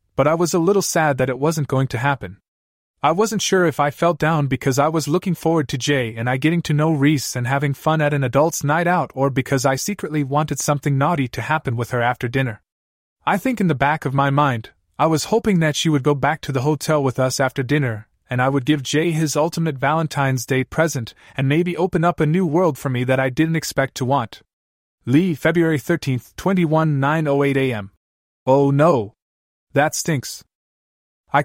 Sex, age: male, 30-49